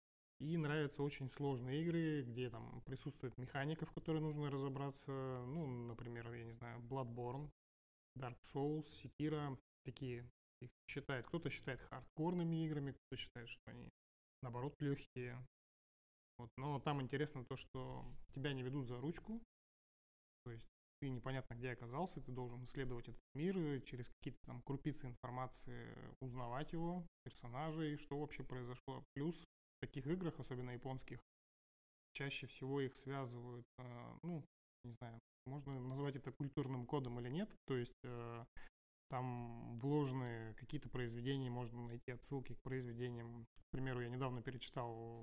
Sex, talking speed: male, 135 wpm